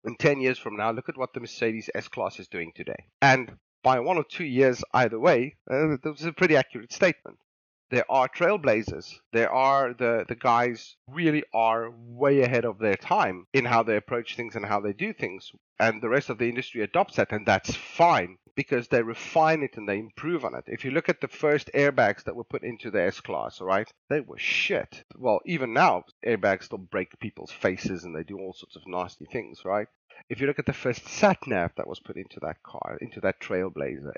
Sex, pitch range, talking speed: male, 110-145 Hz, 220 wpm